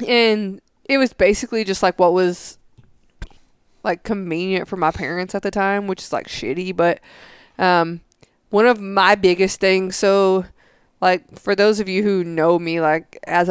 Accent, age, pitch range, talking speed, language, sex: American, 20-39, 170-195 Hz, 170 wpm, English, female